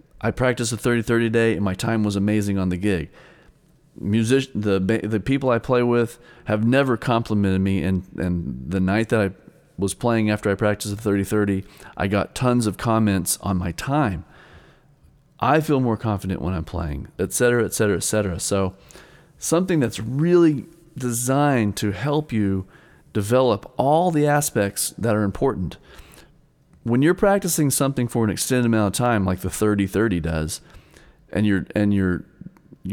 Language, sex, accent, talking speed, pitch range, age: English, male, American, 165 wpm, 95-115 Hz, 40-59